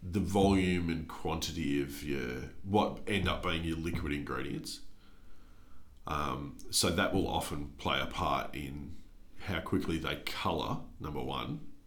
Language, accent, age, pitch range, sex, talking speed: English, Australian, 40-59, 75-95 Hz, male, 140 wpm